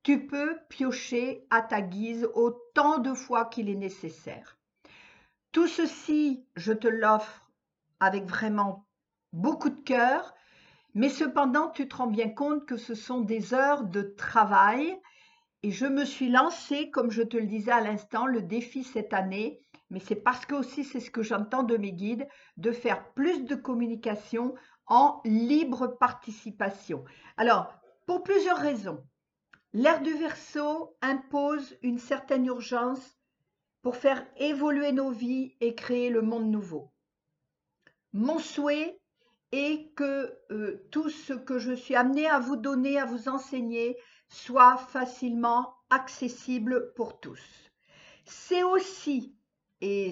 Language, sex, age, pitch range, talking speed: French, female, 50-69, 230-280 Hz, 140 wpm